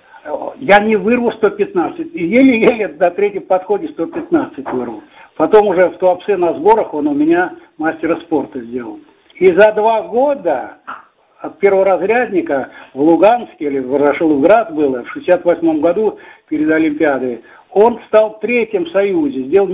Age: 60-79